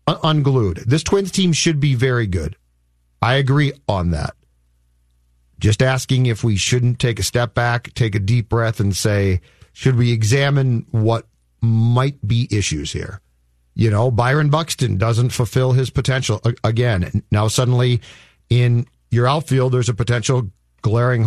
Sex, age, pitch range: male, 50-69, 110-145 Hz